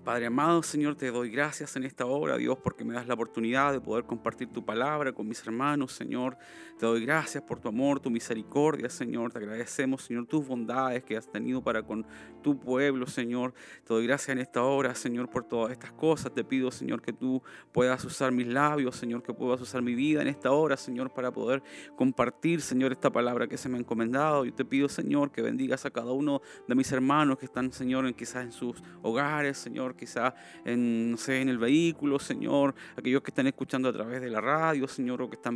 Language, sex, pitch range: Spanish, male, 120-140 Hz